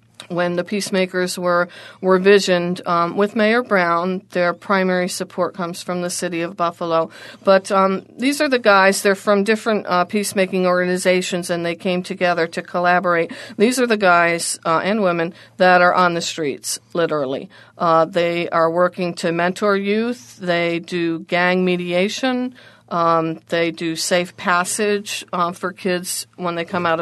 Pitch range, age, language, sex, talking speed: 170-200 Hz, 50-69, English, female, 160 wpm